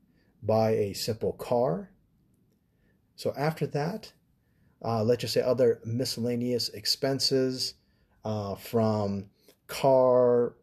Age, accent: 30-49, American